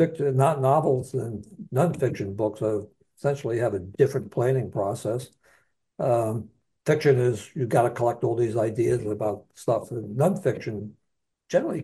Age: 60-79